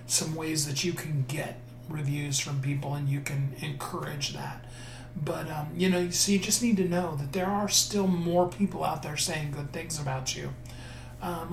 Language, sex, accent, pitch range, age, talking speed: English, male, American, 135-165 Hz, 40-59, 205 wpm